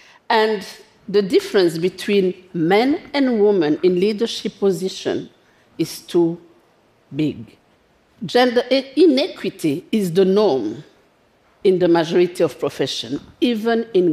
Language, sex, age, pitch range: Korean, female, 50-69, 180-250 Hz